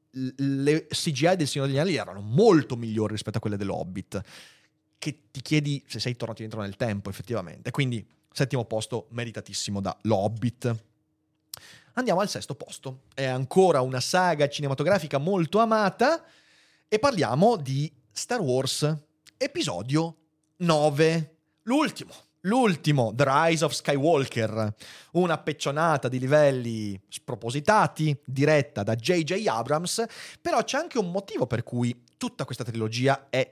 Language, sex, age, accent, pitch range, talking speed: Italian, male, 30-49, native, 115-155 Hz, 130 wpm